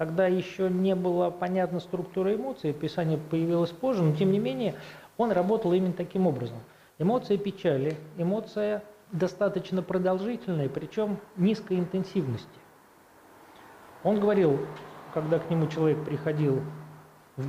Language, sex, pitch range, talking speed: Russian, male, 140-185 Hz, 120 wpm